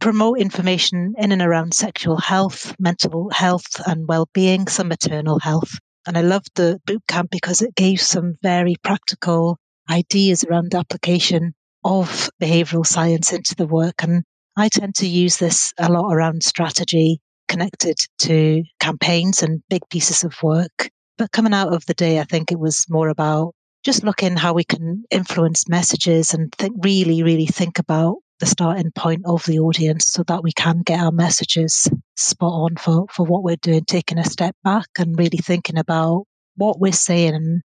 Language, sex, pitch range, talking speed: English, female, 165-185 Hz, 170 wpm